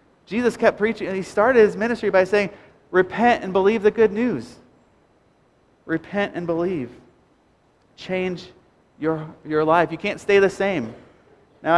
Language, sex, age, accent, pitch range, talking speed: English, male, 30-49, American, 175-215 Hz, 150 wpm